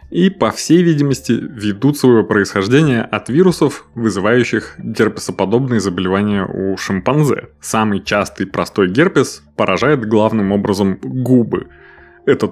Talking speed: 110 wpm